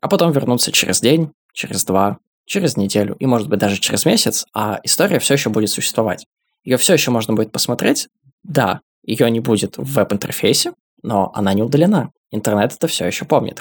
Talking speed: 185 wpm